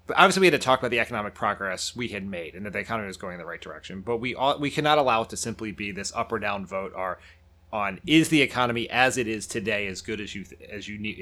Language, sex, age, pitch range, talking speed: English, male, 30-49, 90-120 Hz, 290 wpm